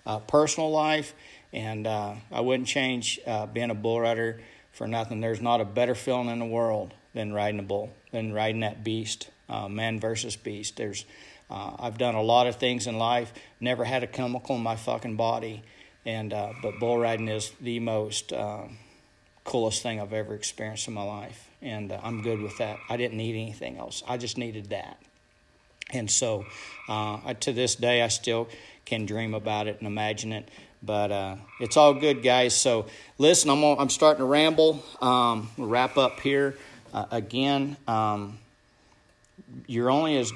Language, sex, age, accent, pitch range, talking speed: English, male, 50-69, American, 110-125 Hz, 185 wpm